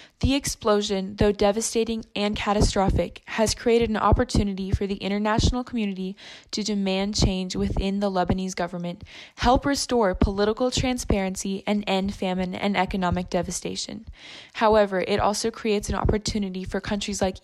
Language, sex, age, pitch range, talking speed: English, female, 10-29, 185-215 Hz, 140 wpm